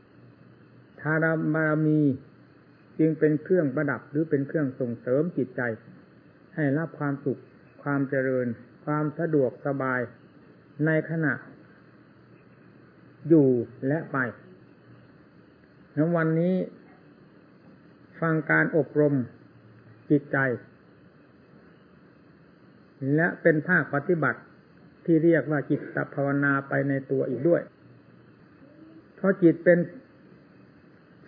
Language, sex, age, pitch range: English, male, 60-79, 135-160 Hz